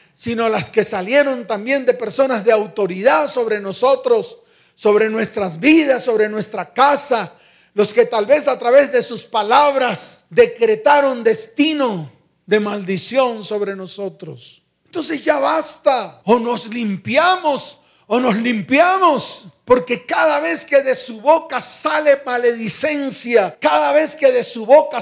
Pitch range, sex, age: 230-300 Hz, male, 40-59